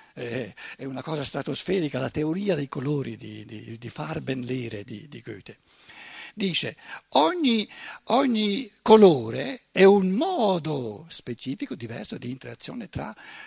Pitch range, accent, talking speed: 140-230 Hz, native, 125 wpm